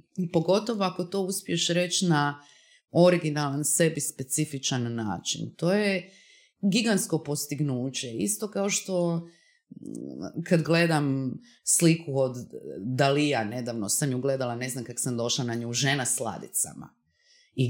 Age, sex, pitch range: 30-49, female, 130-180 Hz